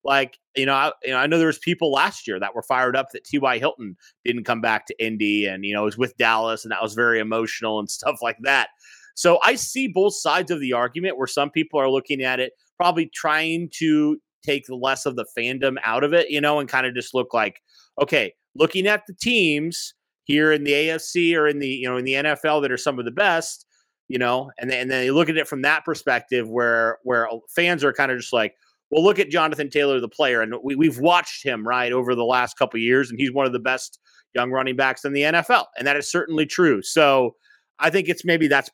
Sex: male